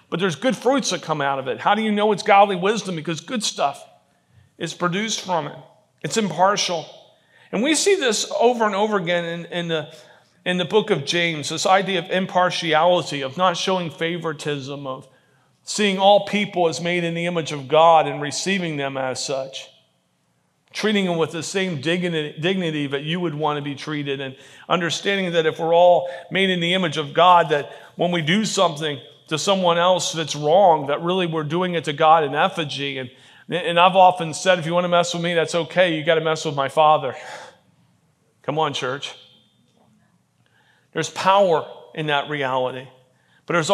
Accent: American